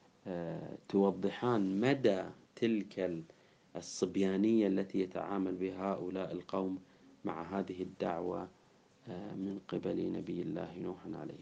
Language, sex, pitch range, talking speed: Arabic, male, 95-110 Hz, 95 wpm